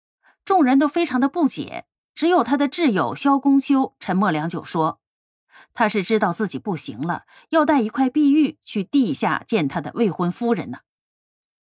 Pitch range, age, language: 180-270 Hz, 30-49, Chinese